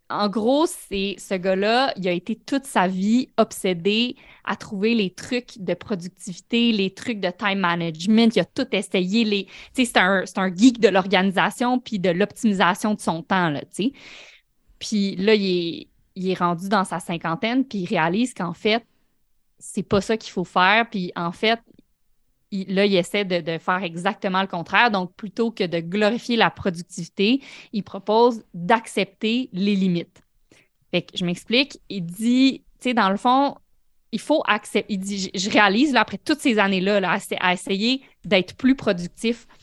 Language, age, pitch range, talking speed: French, 20-39, 185-230 Hz, 175 wpm